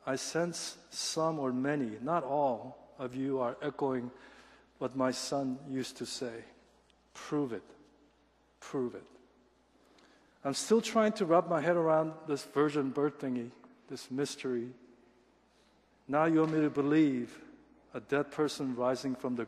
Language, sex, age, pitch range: Korean, male, 50-69, 130-170 Hz